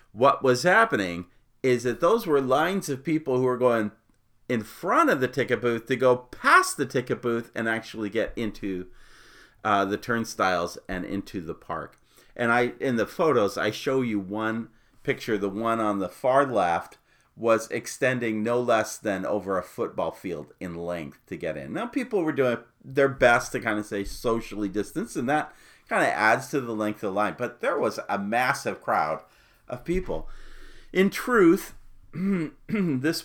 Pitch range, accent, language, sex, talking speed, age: 110-140 Hz, American, English, male, 180 wpm, 40-59